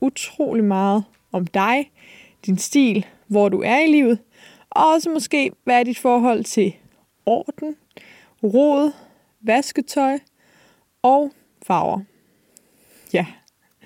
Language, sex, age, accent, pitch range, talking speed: Danish, female, 20-39, native, 210-275 Hz, 110 wpm